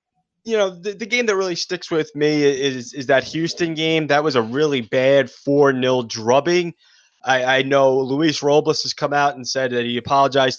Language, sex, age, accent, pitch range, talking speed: English, male, 20-39, American, 130-160 Hz, 200 wpm